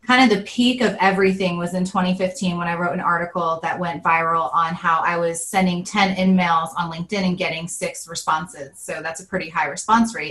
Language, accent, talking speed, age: English, American, 215 wpm, 30-49